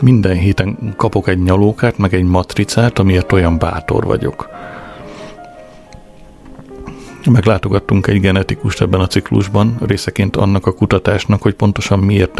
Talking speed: 120 wpm